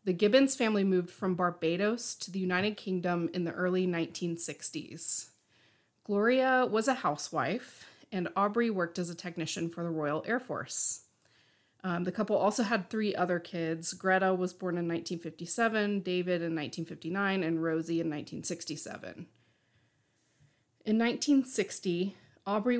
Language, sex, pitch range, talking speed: English, female, 170-210 Hz, 135 wpm